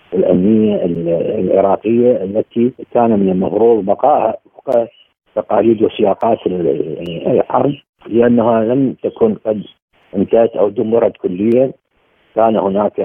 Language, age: Arabic, 50-69